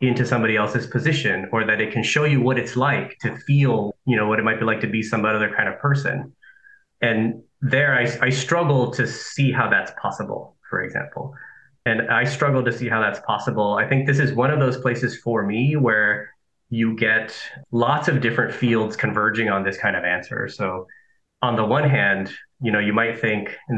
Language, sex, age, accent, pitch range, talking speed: English, male, 20-39, American, 110-130 Hz, 210 wpm